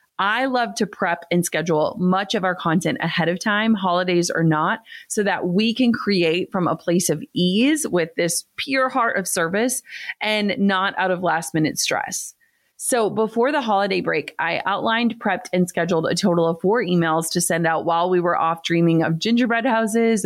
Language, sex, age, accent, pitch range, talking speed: English, female, 30-49, American, 170-220 Hz, 195 wpm